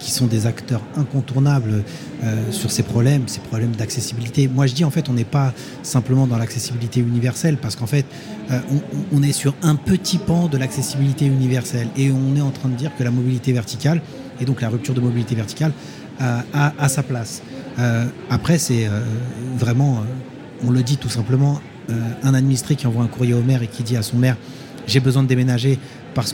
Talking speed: 210 wpm